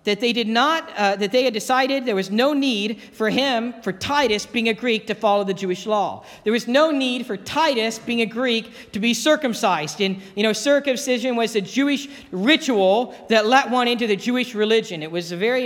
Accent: American